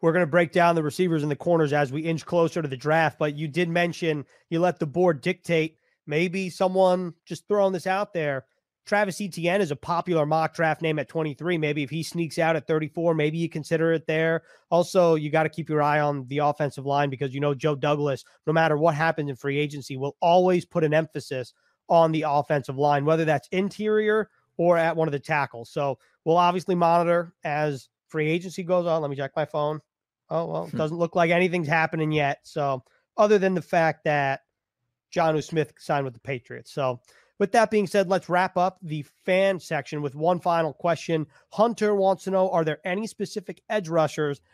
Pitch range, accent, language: 150-175 Hz, American, English